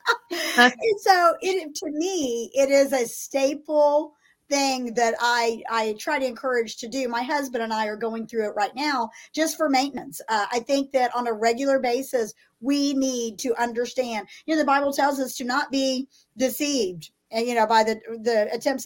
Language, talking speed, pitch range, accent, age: English, 190 wpm, 230-290 Hz, American, 50-69